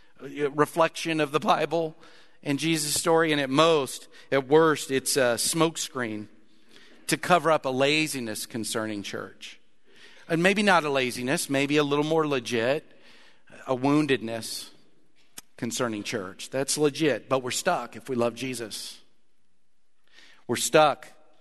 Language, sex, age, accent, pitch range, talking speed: English, male, 50-69, American, 125-160 Hz, 130 wpm